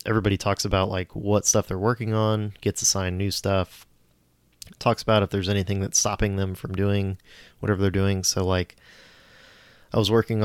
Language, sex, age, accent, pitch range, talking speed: English, male, 20-39, American, 90-100 Hz, 180 wpm